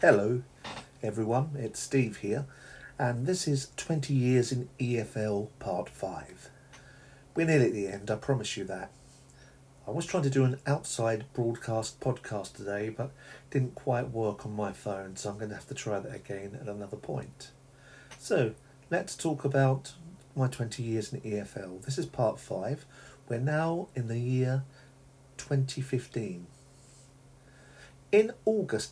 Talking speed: 155 wpm